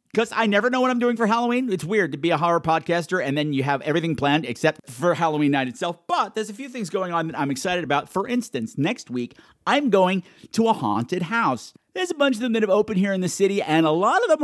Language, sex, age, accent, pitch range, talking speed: English, male, 50-69, American, 150-210 Hz, 270 wpm